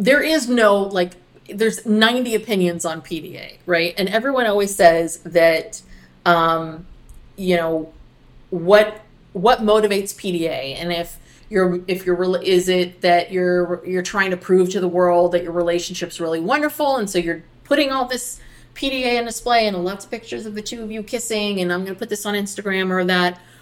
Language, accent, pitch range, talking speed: English, American, 170-215 Hz, 180 wpm